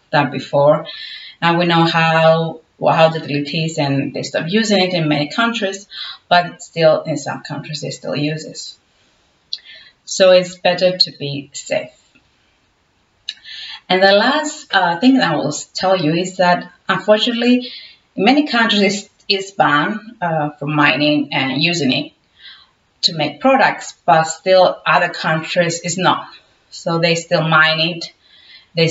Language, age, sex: English, 30-49, female